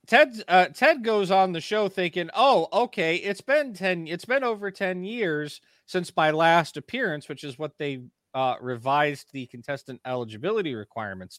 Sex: male